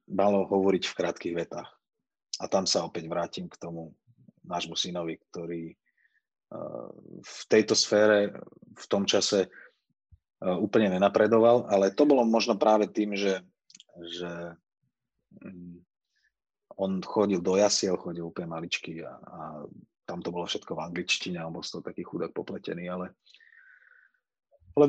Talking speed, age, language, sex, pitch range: 130 wpm, 30-49, Slovak, male, 90-105 Hz